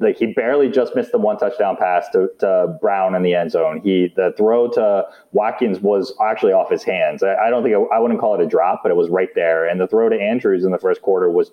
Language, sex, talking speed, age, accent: English, male, 265 wpm, 30-49, American